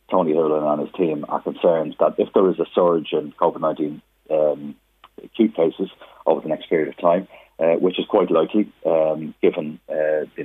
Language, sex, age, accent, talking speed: English, male, 40-59, British, 190 wpm